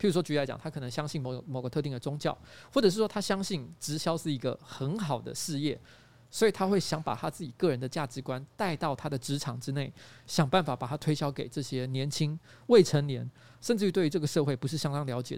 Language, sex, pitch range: Chinese, male, 130-170 Hz